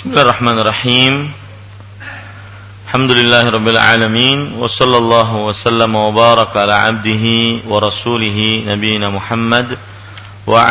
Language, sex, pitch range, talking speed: Malay, male, 100-115 Hz, 85 wpm